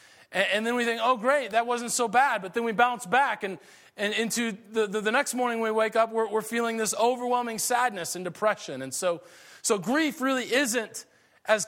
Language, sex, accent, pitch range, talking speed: English, male, American, 155-240 Hz, 210 wpm